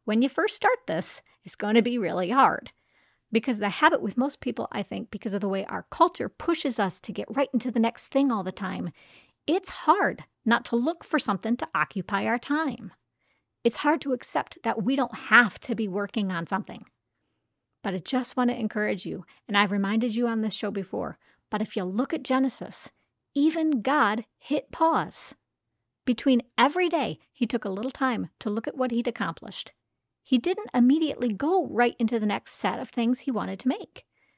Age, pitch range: 40-59, 215-280 Hz